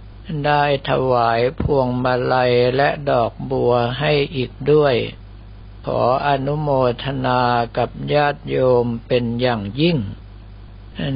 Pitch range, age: 120-145 Hz, 60-79